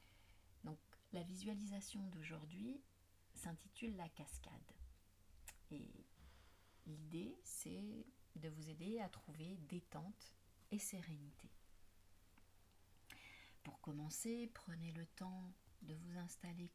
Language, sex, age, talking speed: French, female, 40-59, 90 wpm